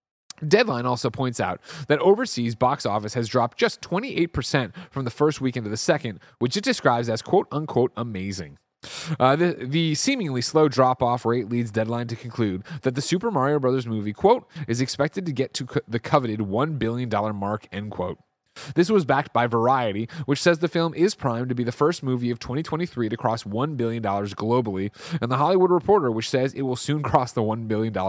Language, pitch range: English, 115-150 Hz